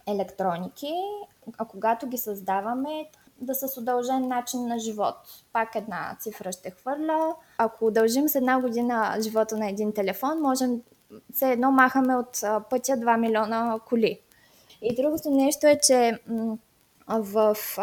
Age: 20-39